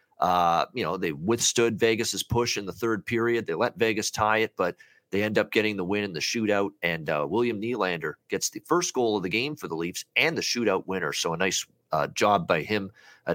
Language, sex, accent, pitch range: English, male, American, 95-120 Hz